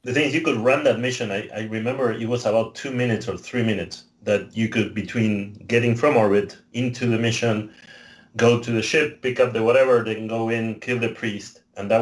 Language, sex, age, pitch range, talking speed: English, male, 30-49, 105-120 Hz, 225 wpm